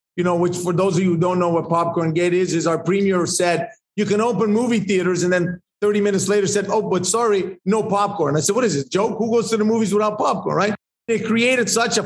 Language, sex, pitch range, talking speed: English, male, 175-215 Hz, 260 wpm